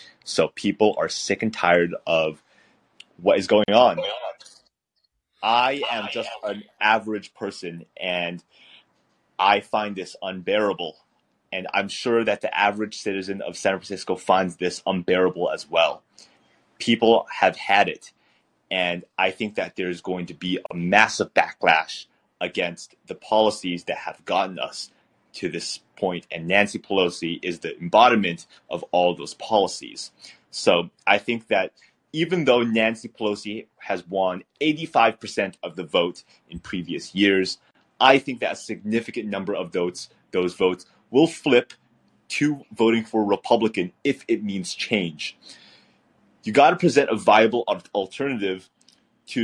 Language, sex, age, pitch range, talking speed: English, male, 30-49, 90-115 Hz, 145 wpm